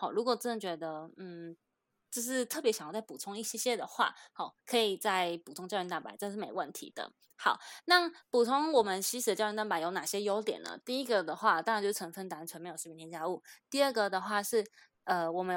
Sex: female